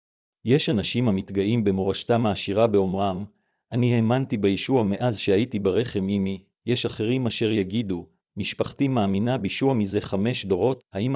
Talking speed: 130 wpm